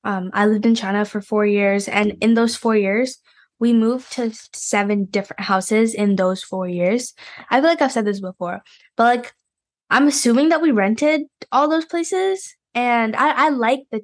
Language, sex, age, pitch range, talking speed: English, female, 10-29, 195-245 Hz, 190 wpm